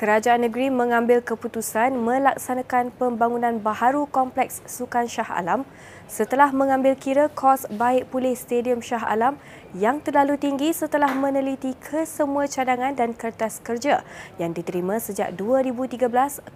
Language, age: Malay, 20-39